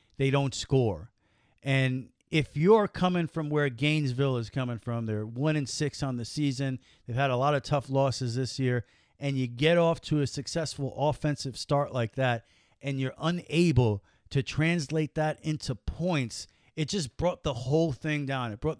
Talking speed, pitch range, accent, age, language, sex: 175 wpm, 125-160 Hz, American, 40-59, English, male